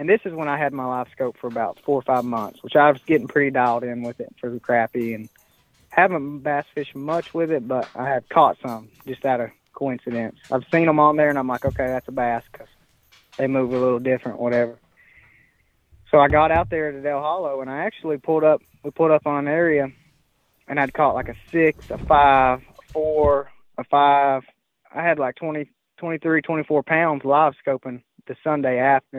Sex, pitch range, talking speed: male, 130-155 Hz, 215 wpm